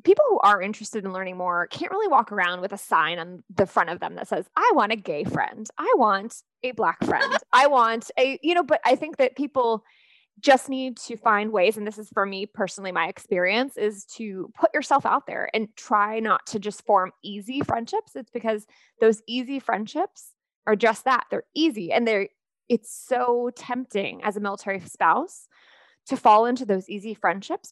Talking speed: 200 wpm